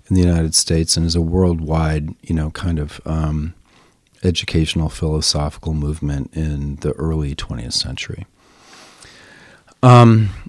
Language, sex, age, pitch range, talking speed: English, male, 40-59, 80-105 Hz, 125 wpm